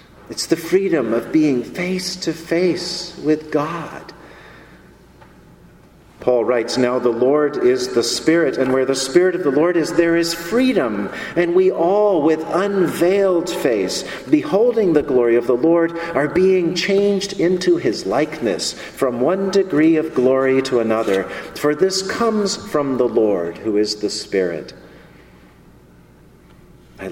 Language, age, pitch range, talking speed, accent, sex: English, 50-69, 120-170 Hz, 145 wpm, American, male